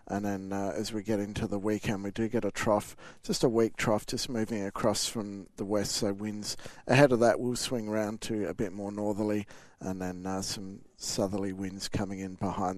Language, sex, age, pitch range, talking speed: English, male, 50-69, 105-120 Hz, 215 wpm